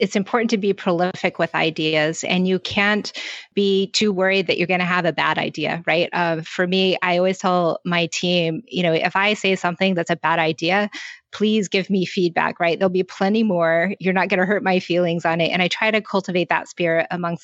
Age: 20-39